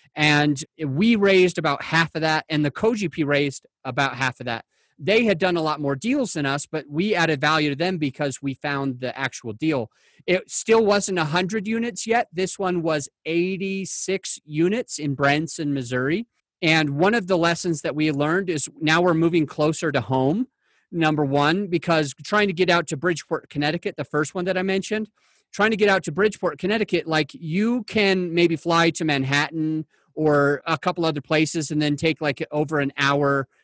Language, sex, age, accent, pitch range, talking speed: English, male, 30-49, American, 145-185 Hz, 190 wpm